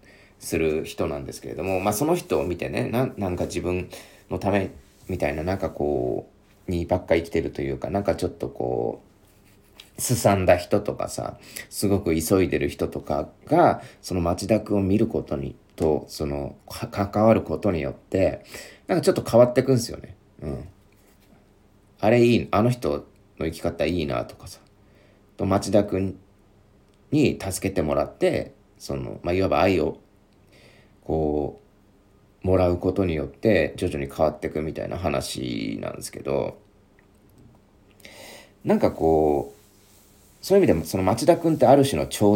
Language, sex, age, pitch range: Japanese, male, 40-59, 85-105 Hz